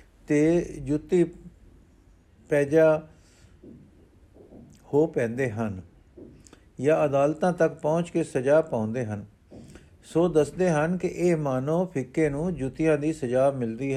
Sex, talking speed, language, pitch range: male, 110 wpm, Punjabi, 120-180 Hz